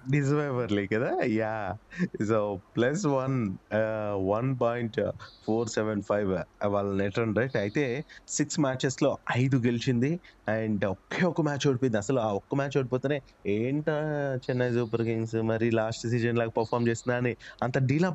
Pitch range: 110-135 Hz